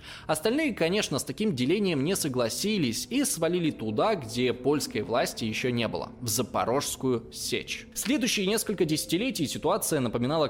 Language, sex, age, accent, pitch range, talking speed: Russian, male, 20-39, native, 120-170 Hz, 135 wpm